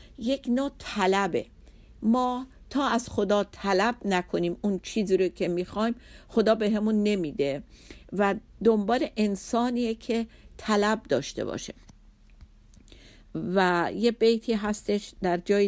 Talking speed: 120 wpm